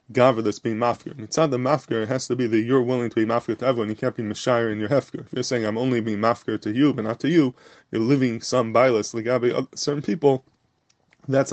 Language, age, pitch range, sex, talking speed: English, 20-39, 110-135 Hz, male, 255 wpm